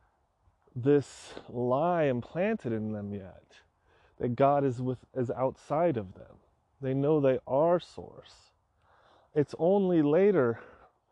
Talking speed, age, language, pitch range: 120 wpm, 30-49, English, 95-155 Hz